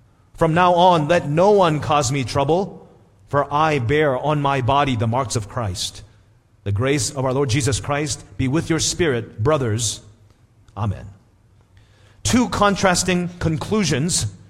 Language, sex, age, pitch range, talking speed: English, male, 40-59, 110-155 Hz, 145 wpm